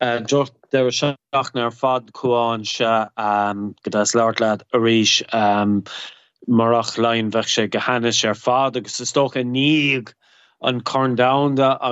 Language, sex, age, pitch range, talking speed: English, male, 30-49, 115-125 Hz, 120 wpm